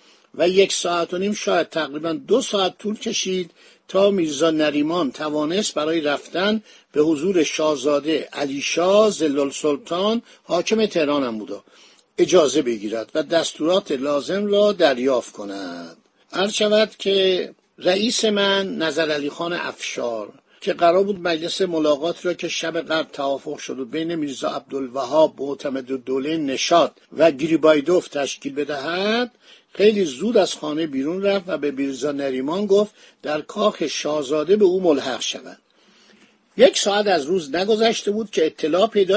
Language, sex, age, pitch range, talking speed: Persian, male, 60-79, 150-200 Hz, 145 wpm